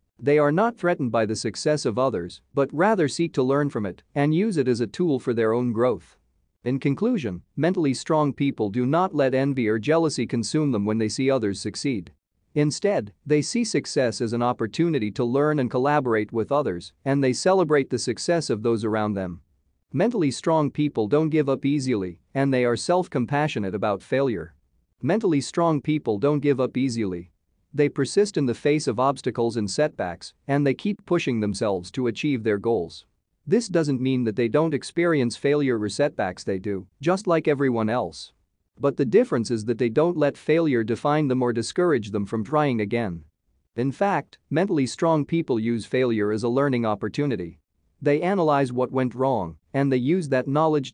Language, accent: English, American